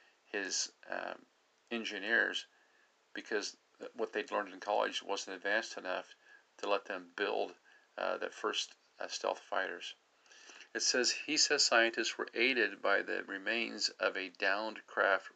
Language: English